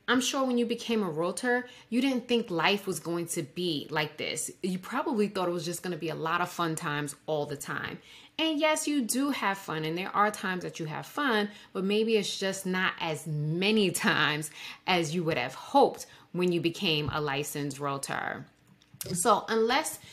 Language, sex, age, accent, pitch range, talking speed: English, female, 30-49, American, 170-230 Hz, 205 wpm